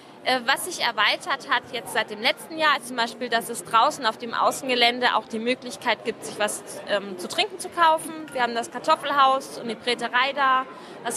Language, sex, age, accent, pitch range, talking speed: German, female, 20-39, German, 240-295 Hz, 200 wpm